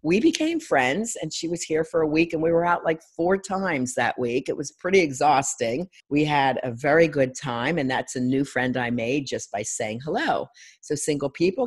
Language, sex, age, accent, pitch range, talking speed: English, female, 50-69, American, 130-175 Hz, 220 wpm